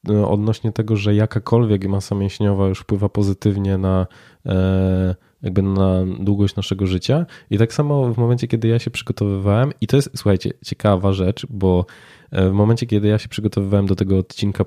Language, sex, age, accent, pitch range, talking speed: Polish, male, 20-39, native, 100-115 Hz, 160 wpm